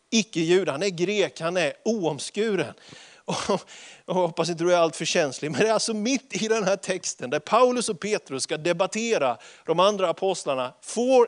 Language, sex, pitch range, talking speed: Swedish, male, 165-225 Hz, 190 wpm